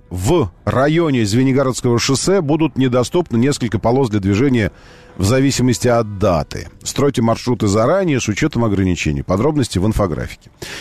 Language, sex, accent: Russian, male, native